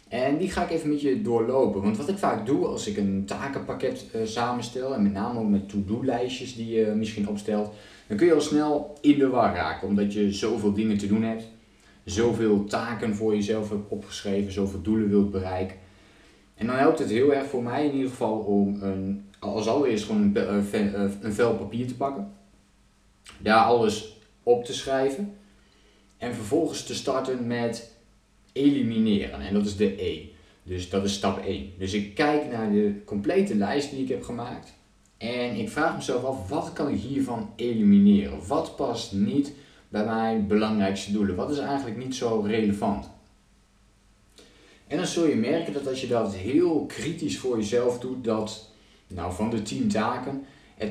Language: Dutch